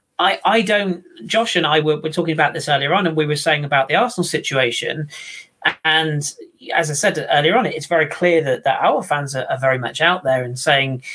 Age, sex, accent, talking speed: 40-59, male, British, 235 wpm